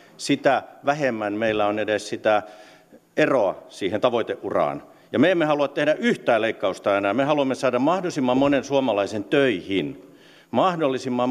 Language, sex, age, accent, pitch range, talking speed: Finnish, male, 50-69, native, 115-140 Hz, 135 wpm